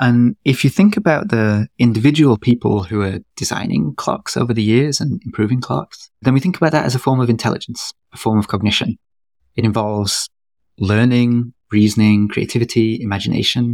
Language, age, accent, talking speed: English, 30-49, British, 165 wpm